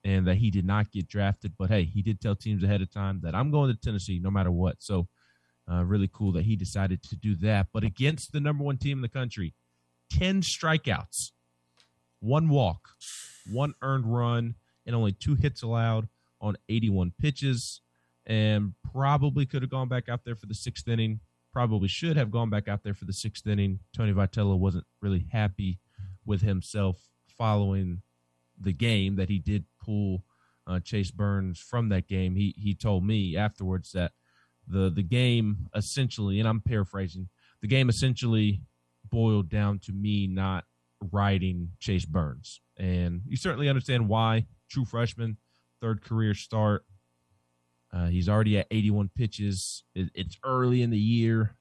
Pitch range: 95-115 Hz